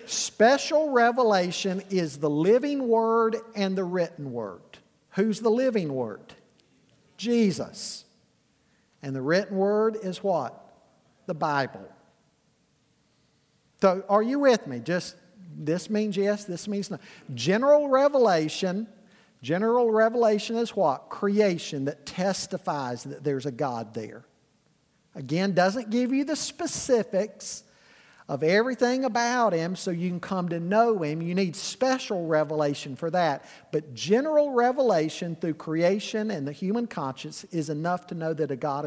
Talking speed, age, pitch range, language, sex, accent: 135 wpm, 50-69, 160-225 Hz, English, male, American